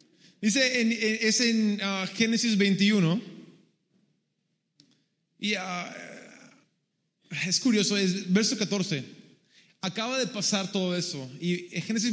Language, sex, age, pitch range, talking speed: Spanish, male, 20-39, 185-235 Hz, 110 wpm